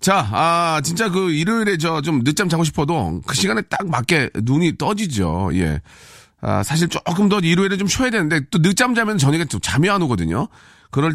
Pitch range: 110-175 Hz